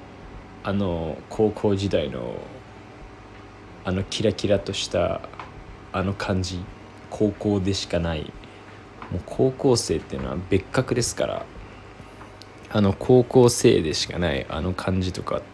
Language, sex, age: Japanese, male, 20-39